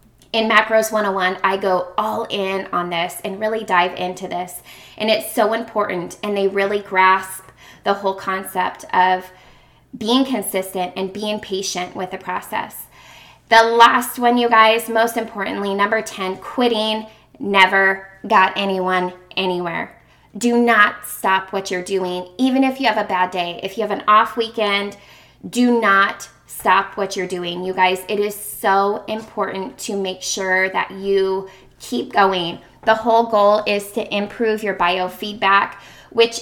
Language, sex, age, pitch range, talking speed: English, female, 20-39, 190-225 Hz, 155 wpm